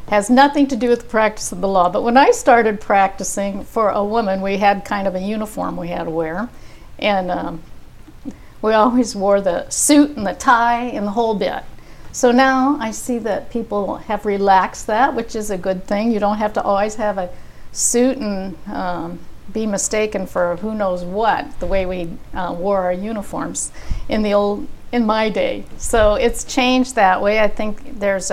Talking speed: 195 wpm